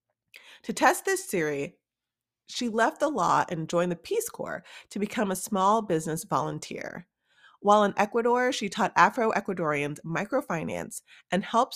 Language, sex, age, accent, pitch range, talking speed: English, female, 30-49, American, 170-240 Hz, 145 wpm